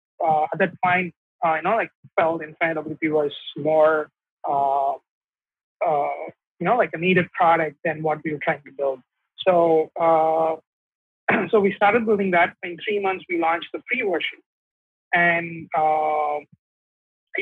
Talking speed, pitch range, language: 165 wpm, 155-180 Hz, English